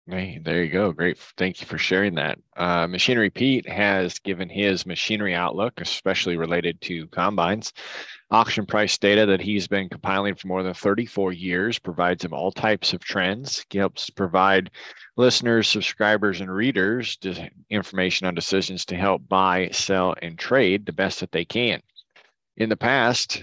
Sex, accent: male, American